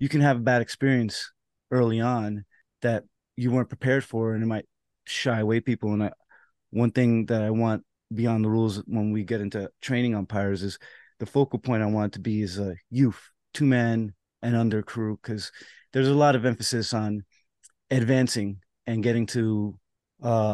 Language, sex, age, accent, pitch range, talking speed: English, male, 30-49, American, 110-130 Hz, 185 wpm